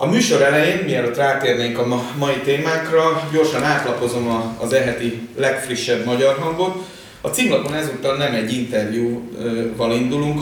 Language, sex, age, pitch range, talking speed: Hungarian, male, 30-49, 115-140 Hz, 125 wpm